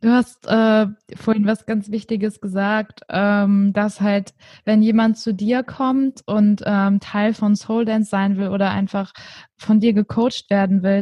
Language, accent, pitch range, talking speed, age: German, German, 205-235 Hz, 170 wpm, 20-39